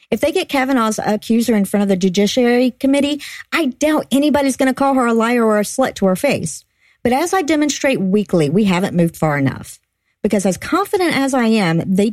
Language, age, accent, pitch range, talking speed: English, 50-69, American, 185-265 Hz, 215 wpm